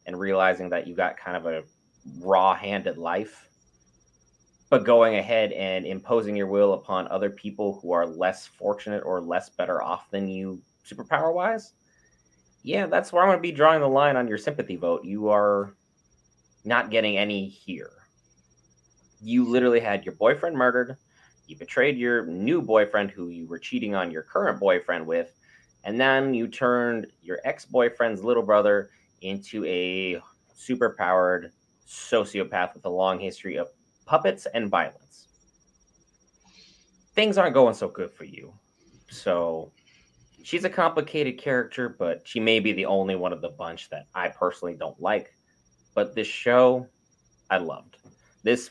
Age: 30-49